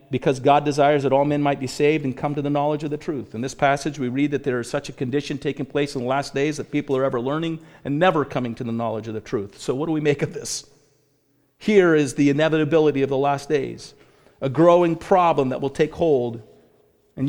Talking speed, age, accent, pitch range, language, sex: 245 wpm, 40-59, American, 135-160 Hz, English, male